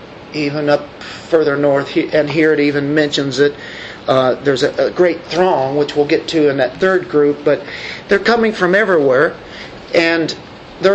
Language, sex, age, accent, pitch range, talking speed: English, male, 50-69, American, 165-205 Hz, 170 wpm